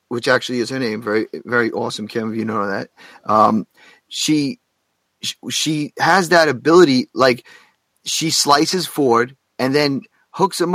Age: 30-49